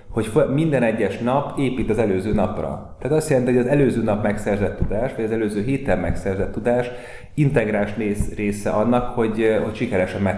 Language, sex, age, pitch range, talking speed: Hungarian, male, 30-49, 95-120 Hz, 170 wpm